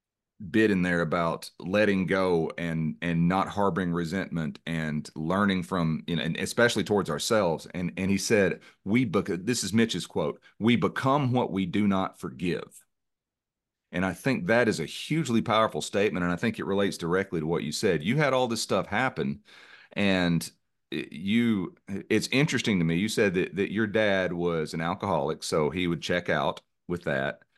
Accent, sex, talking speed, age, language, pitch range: American, male, 185 wpm, 40-59, English, 85-110 Hz